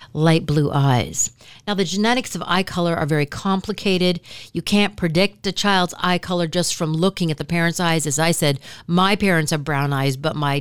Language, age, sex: English, 50-69, female